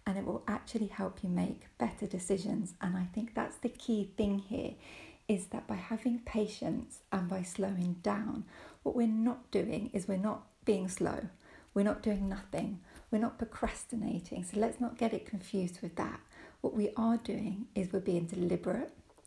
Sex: female